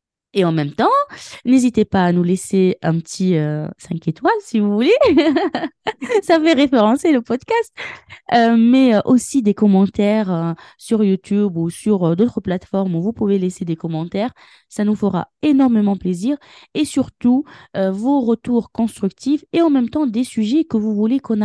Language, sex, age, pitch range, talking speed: French, female, 20-39, 185-245 Hz, 175 wpm